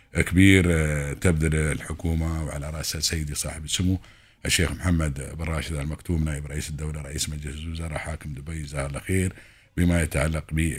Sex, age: male, 50-69